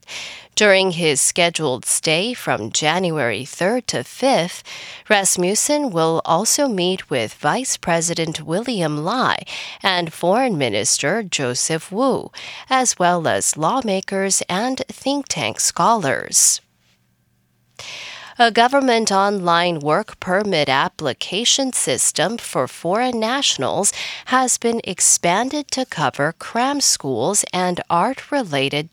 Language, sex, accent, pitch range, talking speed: English, female, American, 160-245 Hz, 105 wpm